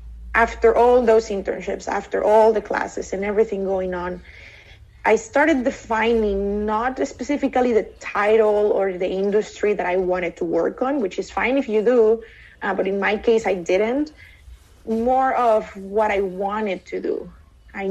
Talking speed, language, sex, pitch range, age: 165 wpm, English, female, 190-225 Hz, 20-39